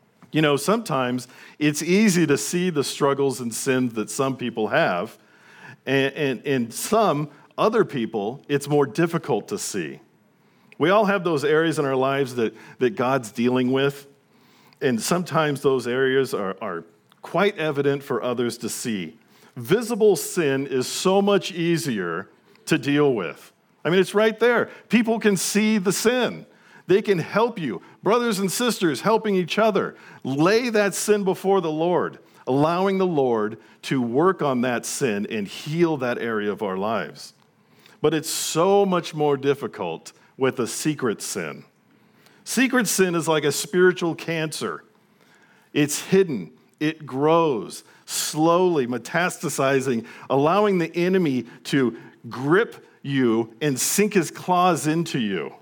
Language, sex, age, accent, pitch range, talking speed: English, male, 50-69, American, 135-195 Hz, 145 wpm